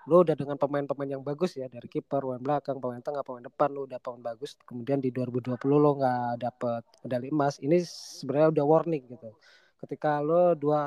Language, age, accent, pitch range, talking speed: Indonesian, 20-39, native, 130-165 Hz, 195 wpm